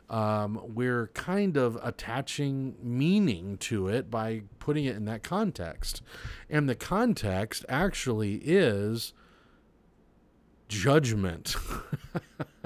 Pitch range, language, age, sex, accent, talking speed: 100-145 Hz, English, 40-59, male, American, 95 wpm